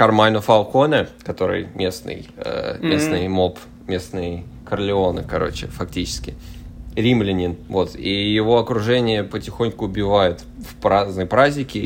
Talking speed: 95 wpm